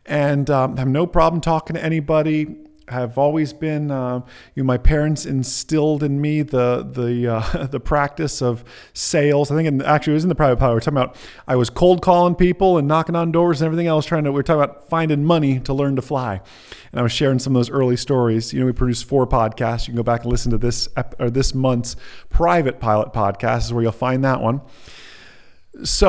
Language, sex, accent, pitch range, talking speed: English, male, American, 125-160 Hz, 235 wpm